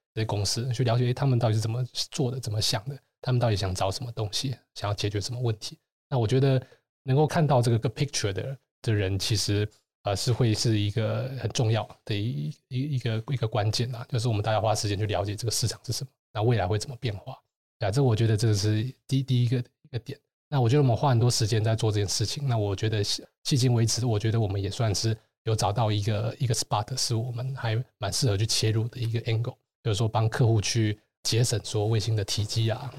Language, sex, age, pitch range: Chinese, male, 20-39, 110-125 Hz